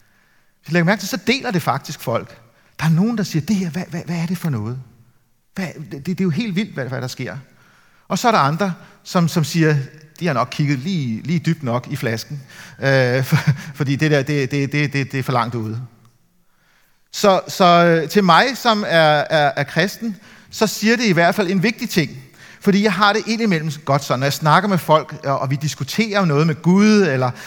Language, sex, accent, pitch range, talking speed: Danish, male, native, 135-180 Hz, 220 wpm